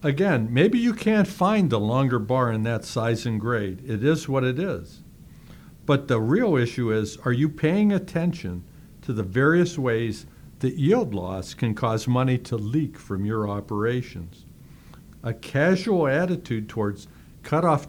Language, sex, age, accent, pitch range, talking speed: English, male, 60-79, American, 110-150 Hz, 160 wpm